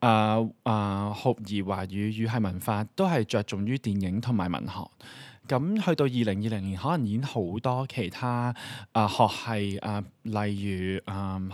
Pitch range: 100-125 Hz